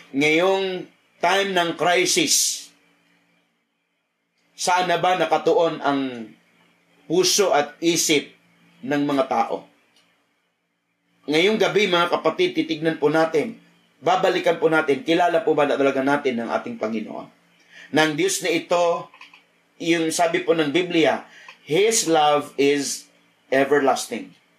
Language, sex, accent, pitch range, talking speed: Filipino, male, native, 145-185 Hz, 110 wpm